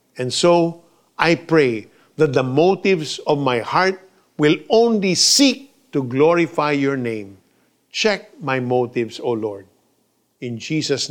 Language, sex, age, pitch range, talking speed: Filipino, male, 50-69, 130-180 Hz, 130 wpm